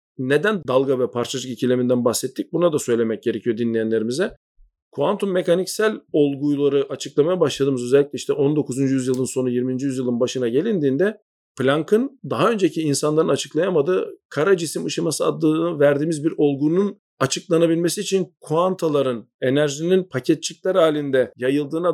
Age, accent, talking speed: 40-59, native, 120 wpm